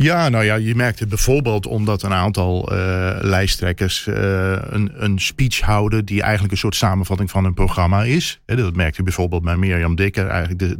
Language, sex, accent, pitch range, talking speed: Dutch, male, Dutch, 100-130 Hz, 185 wpm